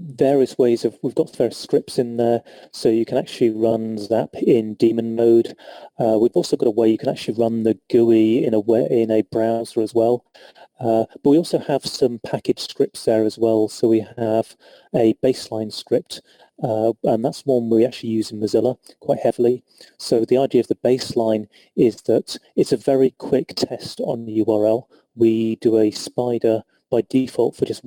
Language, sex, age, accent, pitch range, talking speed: English, male, 30-49, British, 110-125 Hz, 195 wpm